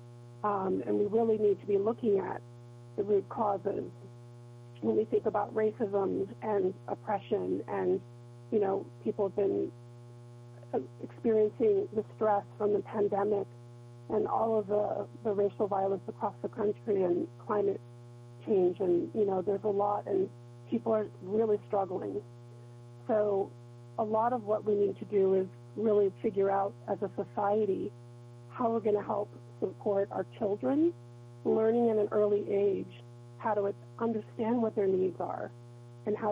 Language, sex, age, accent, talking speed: English, female, 40-59, American, 155 wpm